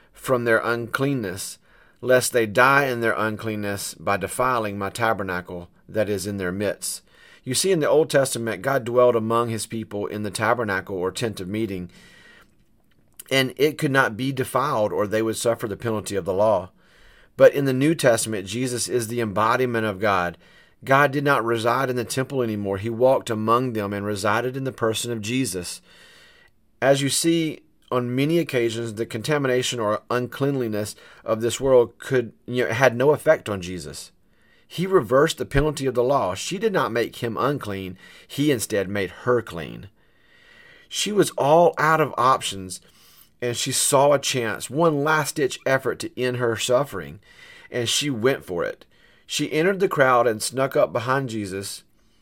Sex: male